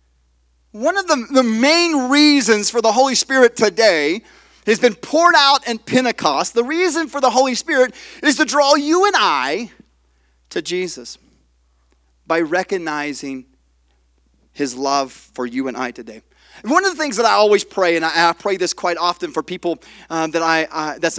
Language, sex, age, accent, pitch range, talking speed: English, male, 30-49, American, 145-235 Hz, 175 wpm